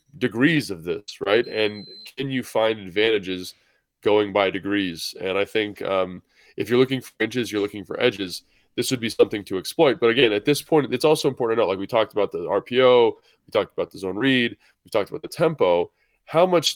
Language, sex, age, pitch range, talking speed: English, male, 20-39, 100-125 Hz, 215 wpm